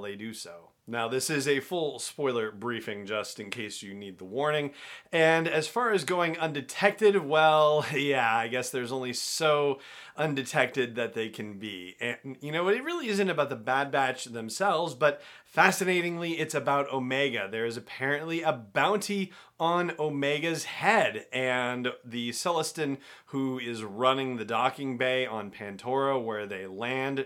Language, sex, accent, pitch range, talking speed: English, male, American, 120-155 Hz, 160 wpm